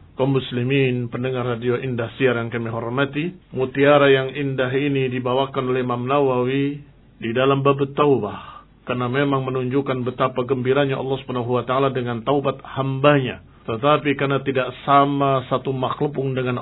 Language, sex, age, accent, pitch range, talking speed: Indonesian, male, 50-69, native, 130-145 Hz, 135 wpm